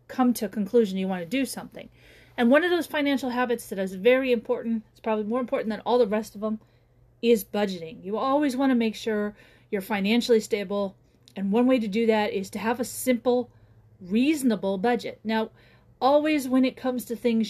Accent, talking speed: American, 205 wpm